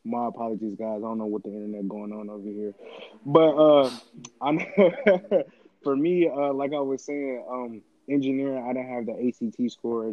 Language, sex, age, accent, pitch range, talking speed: English, male, 20-39, American, 110-130 Hz, 180 wpm